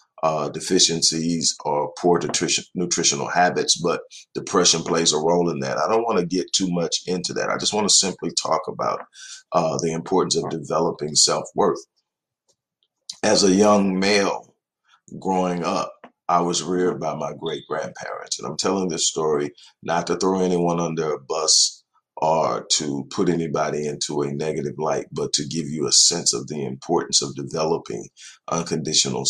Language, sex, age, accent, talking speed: English, male, 50-69, American, 165 wpm